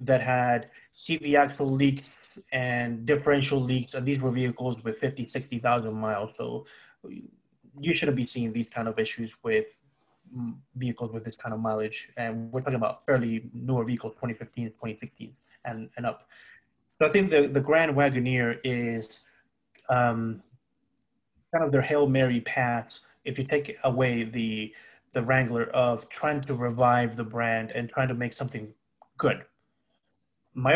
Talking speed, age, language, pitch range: 155 wpm, 30-49, English, 120-140 Hz